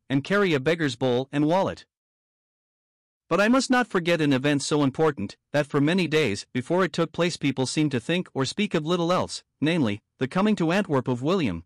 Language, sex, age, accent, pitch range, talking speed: English, male, 50-69, American, 135-175 Hz, 205 wpm